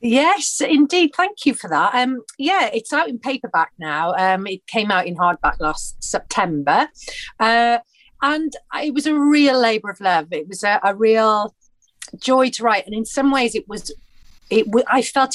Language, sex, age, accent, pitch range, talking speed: English, female, 40-59, British, 180-245 Hz, 185 wpm